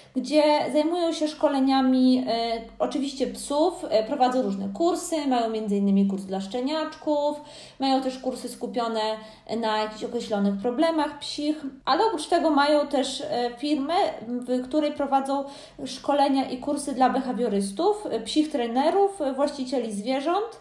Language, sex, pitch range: Polish, female, 240-295 Hz